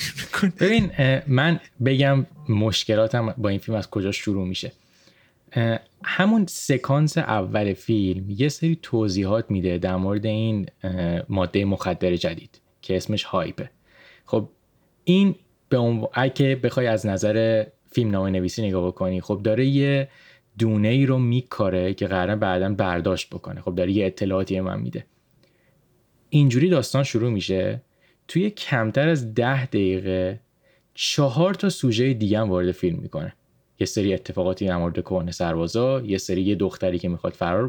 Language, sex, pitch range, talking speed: Persian, male, 95-135 Hz, 140 wpm